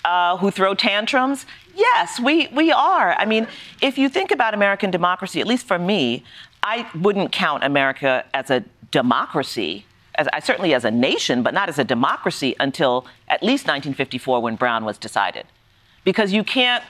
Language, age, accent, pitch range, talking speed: English, 40-59, American, 135-225 Hz, 175 wpm